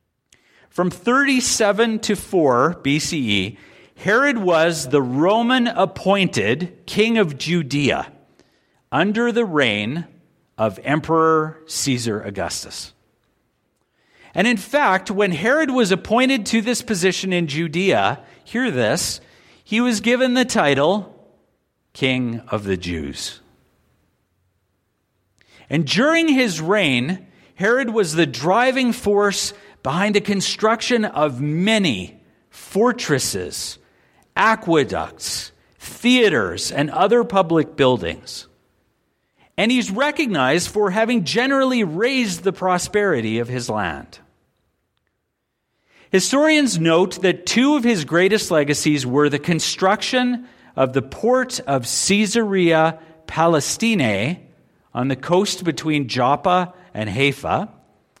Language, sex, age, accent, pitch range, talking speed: English, male, 50-69, American, 140-225 Hz, 100 wpm